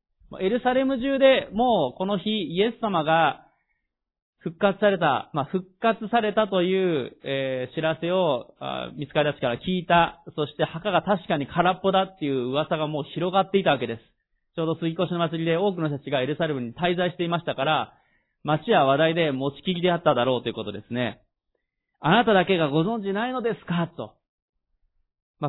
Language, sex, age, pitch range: Japanese, male, 30-49, 135-185 Hz